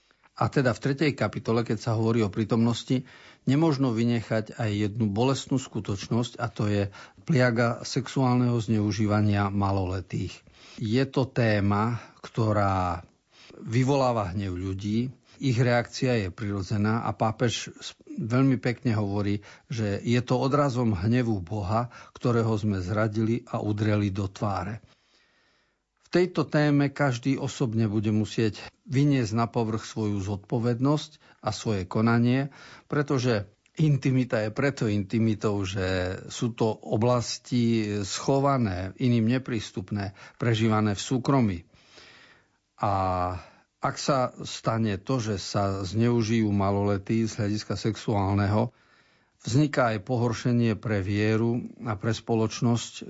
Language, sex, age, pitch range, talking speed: Slovak, male, 50-69, 105-125 Hz, 115 wpm